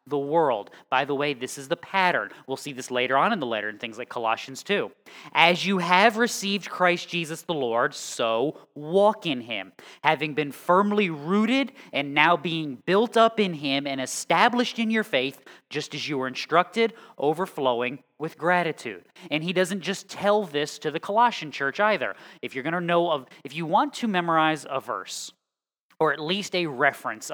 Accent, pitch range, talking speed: American, 140-185 Hz, 190 wpm